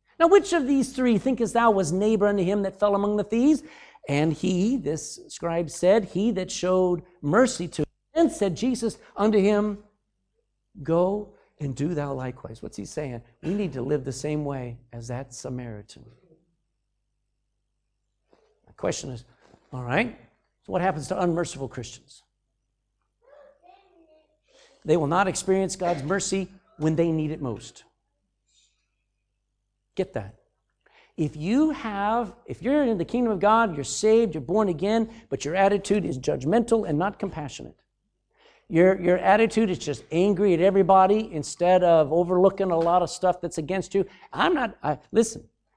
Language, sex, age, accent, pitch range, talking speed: English, male, 60-79, American, 145-215 Hz, 155 wpm